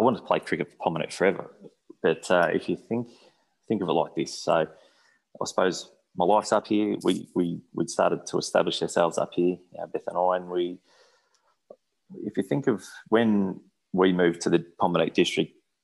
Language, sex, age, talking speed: English, male, 20-39, 195 wpm